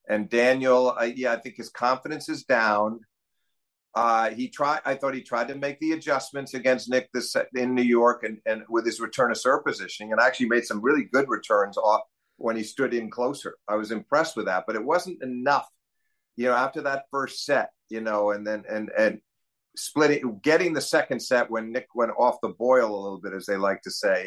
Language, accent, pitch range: English, American, 110-140 Hz